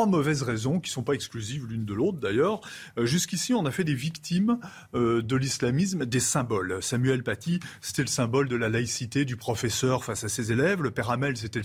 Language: French